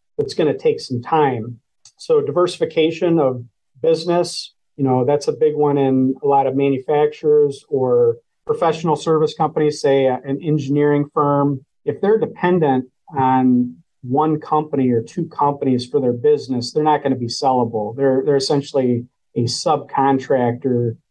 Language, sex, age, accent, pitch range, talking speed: English, male, 40-59, American, 130-160 Hz, 150 wpm